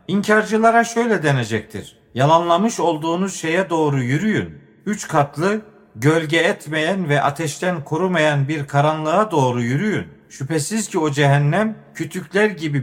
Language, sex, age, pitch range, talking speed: Turkish, male, 50-69, 145-200 Hz, 115 wpm